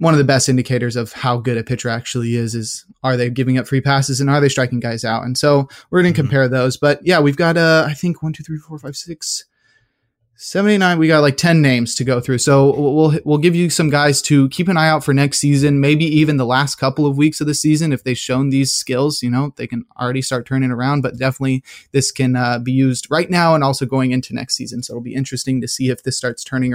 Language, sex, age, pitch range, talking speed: English, male, 20-39, 125-150 Hz, 260 wpm